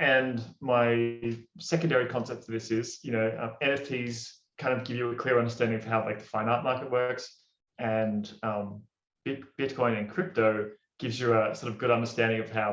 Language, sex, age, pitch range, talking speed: English, male, 20-39, 110-125 Hz, 190 wpm